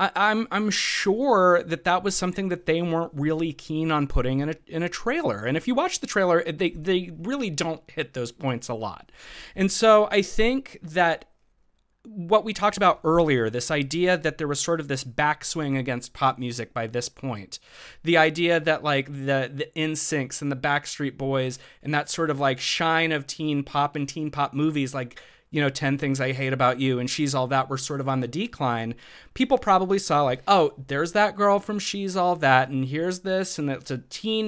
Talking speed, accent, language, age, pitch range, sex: 210 wpm, American, English, 30-49, 135-180 Hz, male